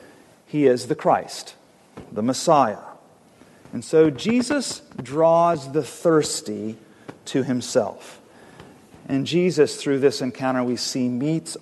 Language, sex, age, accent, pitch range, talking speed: English, male, 40-59, American, 125-160 Hz, 115 wpm